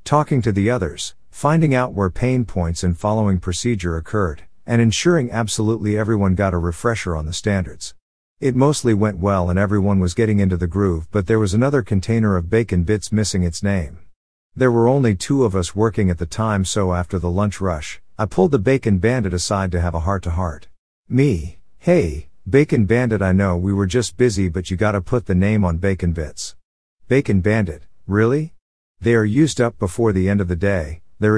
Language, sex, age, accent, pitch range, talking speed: English, male, 50-69, American, 90-115 Hz, 200 wpm